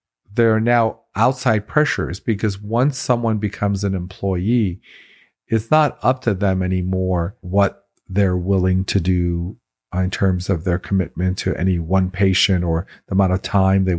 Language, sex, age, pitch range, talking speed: English, male, 50-69, 95-110 Hz, 160 wpm